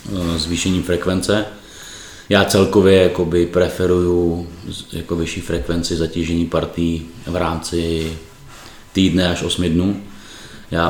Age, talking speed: 30-49, 95 wpm